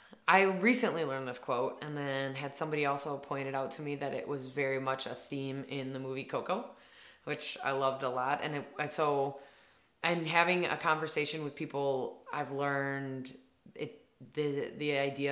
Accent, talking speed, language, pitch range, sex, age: American, 180 wpm, English, 125-140 Hz, female, 20-39